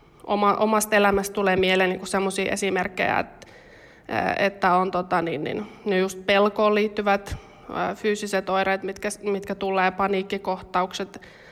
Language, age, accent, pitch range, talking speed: Finnish, 20-39, native, 185-200 Hz, 120 wpm